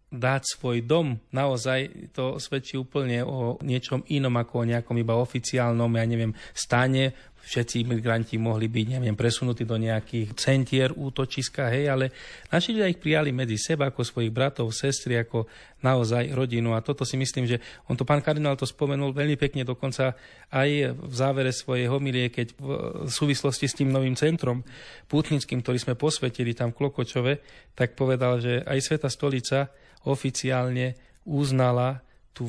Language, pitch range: Slovak, 120-140 Hz